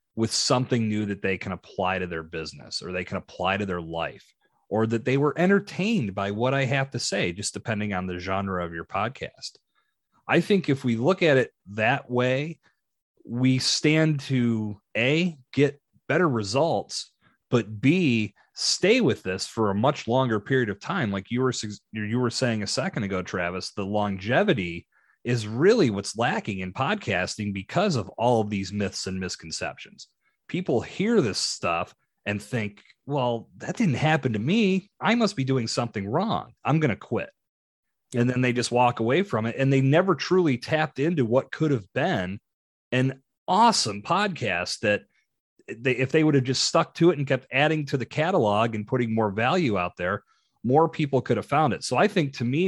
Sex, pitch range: male, 105-140 Hz